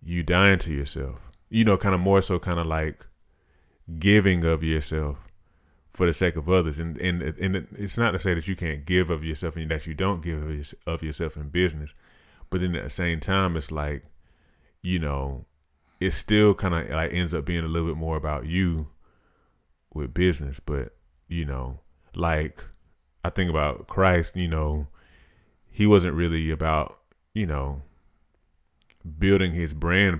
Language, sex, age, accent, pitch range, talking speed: English, male, 20-39, American, 75-95 Hz, 175 wpm